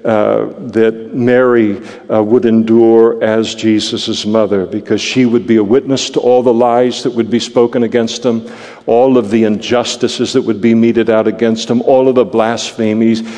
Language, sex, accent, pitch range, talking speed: English, male, American, 110-120 Hz, 180 wpm